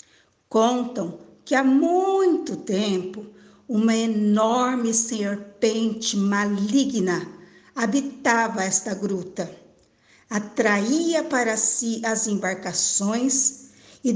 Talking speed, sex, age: 75 wpm, female, 50-69